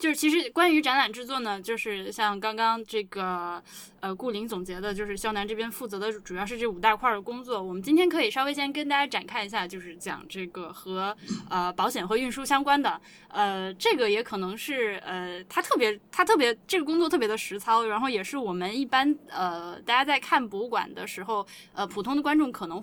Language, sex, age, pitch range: Chinese, female, 10-29, 200-265 Hz